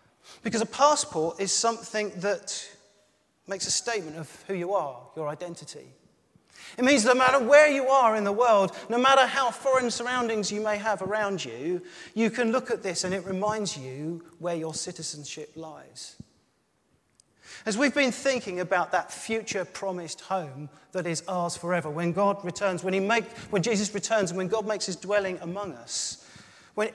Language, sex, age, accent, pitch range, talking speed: English, male, 40-59, British, 165-210 Hz, 175 wpm